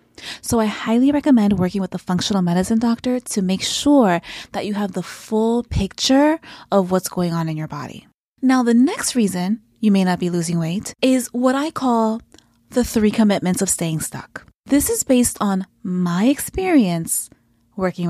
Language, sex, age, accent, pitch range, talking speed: English, female, 20-39, American, 180-250 Hz, 175 wpm